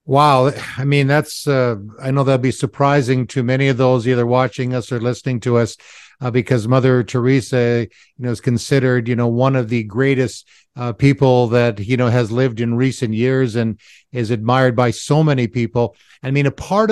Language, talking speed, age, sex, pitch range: English, 195 wpm, 50-69, male, 125-155 Hz